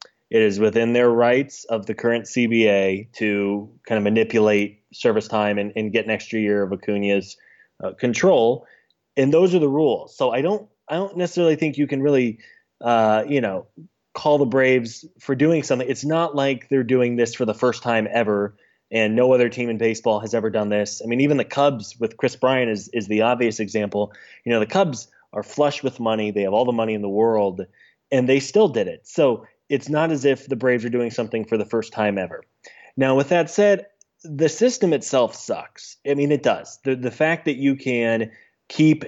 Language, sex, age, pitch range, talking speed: English, male, 20-39, 110-145 Hz, 210 wpm